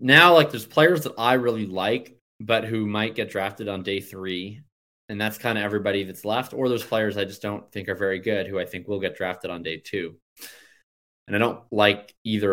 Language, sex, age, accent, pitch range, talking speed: English, male, 20-39, American, 105-125 Hz, 225 wpm